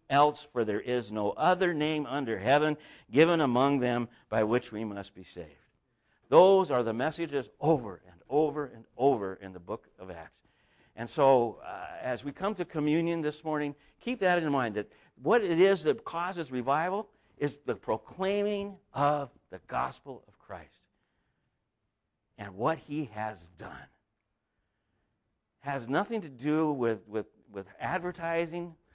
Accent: American